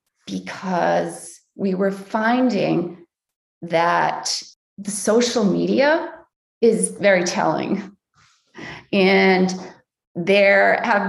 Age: 30-49